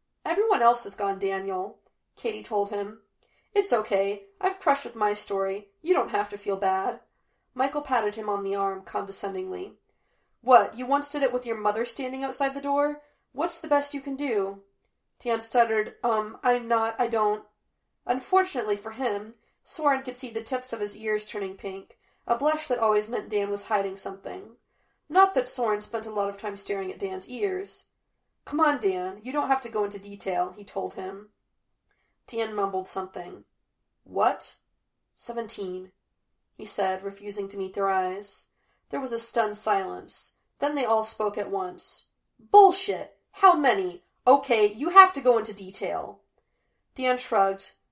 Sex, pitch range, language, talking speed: female, 200-275 Hz, English, 170 wpm